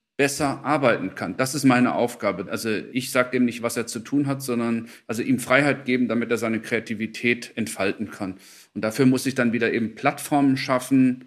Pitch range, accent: 110-130 Hz, German